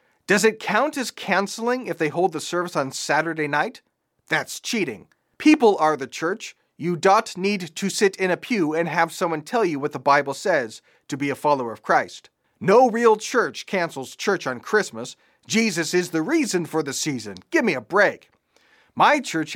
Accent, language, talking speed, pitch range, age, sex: American, English, 190 wpm, 145-190 Hz, 40-59, male